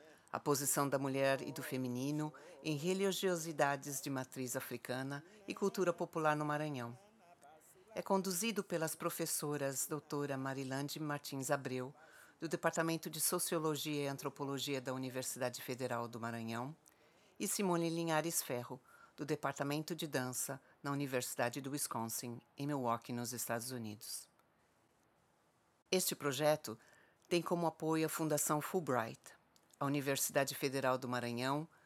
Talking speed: 125 wpm